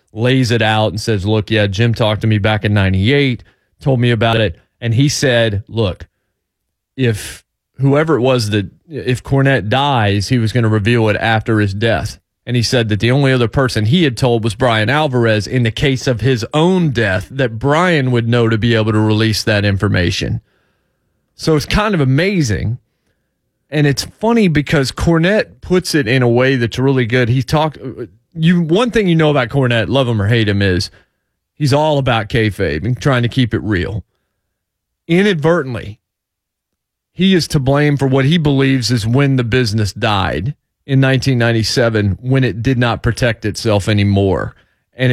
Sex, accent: male, American